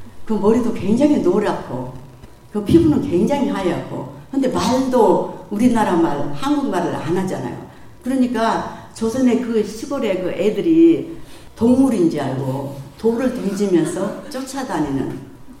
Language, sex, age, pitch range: Korean, female, 60-79, 160-220 Hz